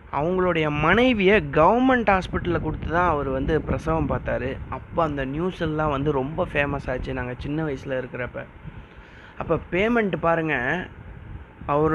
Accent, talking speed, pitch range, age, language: native, 125 wpm, 135-165 Hz, 20-39, Tamil